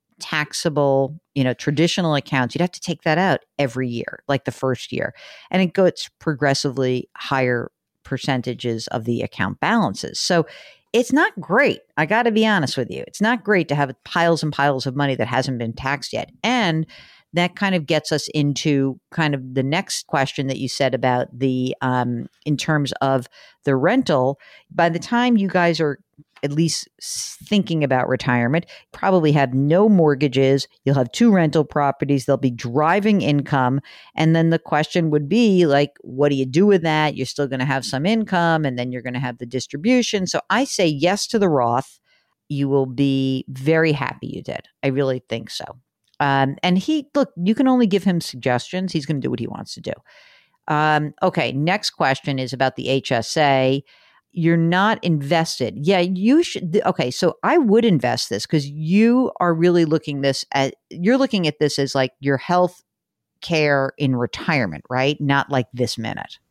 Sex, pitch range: female, 135-180 Hz